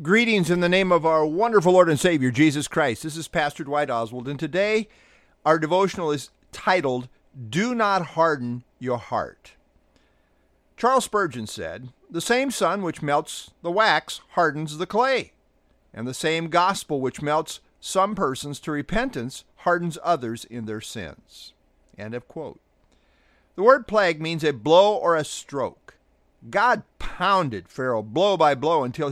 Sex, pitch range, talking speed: male, 125-180 Hz, 155 wpm